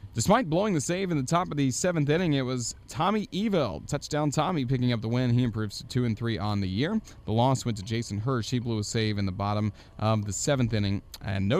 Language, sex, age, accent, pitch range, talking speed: English, male, 30-49, American, 105-130 Hz, 250 wpm